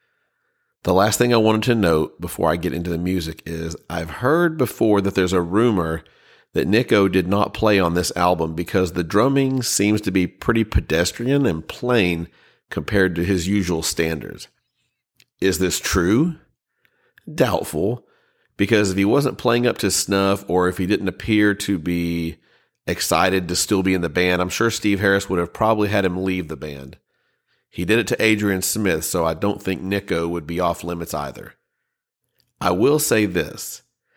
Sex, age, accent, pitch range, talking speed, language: male, 40-59, American, 90-110 Hz, 175 wpm, English